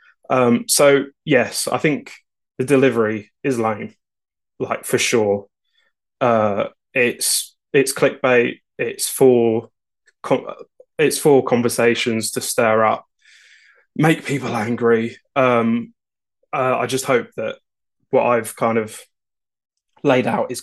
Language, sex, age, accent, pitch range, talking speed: English, male, 20-39, British, 115-145 Hz, 120 wpm